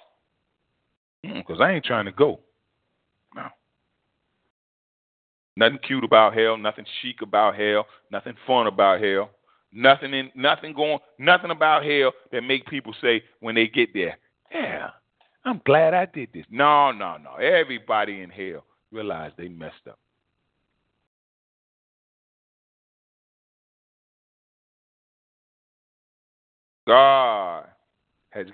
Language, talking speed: English, 110 wpm